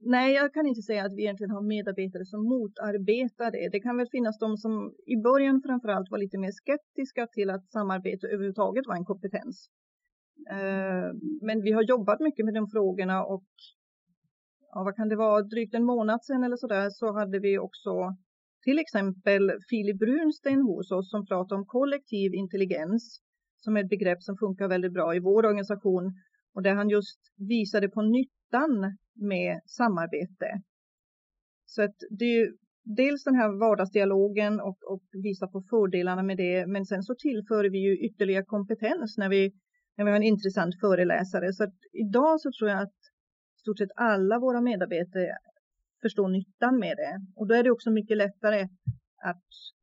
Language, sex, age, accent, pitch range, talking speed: Swedish, female, 40-59, native, 195-240 Hz, 175 wpm